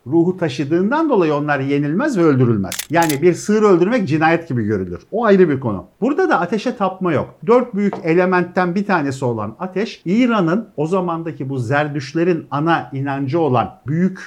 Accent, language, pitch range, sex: native, Turkish, 140-210 Hz, male